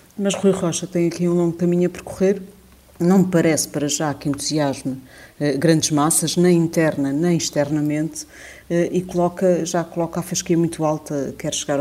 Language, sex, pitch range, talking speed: Portuguese, female, 140-165 Hz, 170 wpm